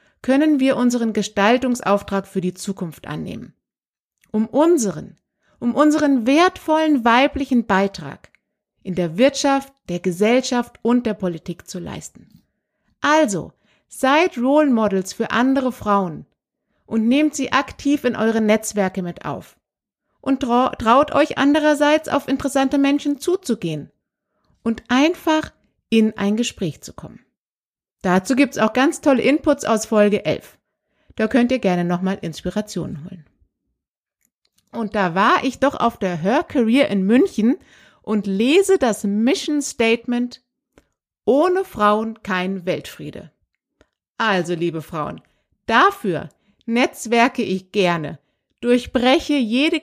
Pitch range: 195-275 Hz